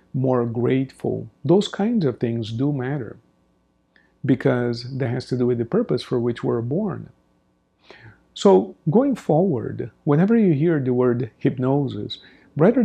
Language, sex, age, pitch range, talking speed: English, male, 50-69, 125-160 Hz, 140 wpm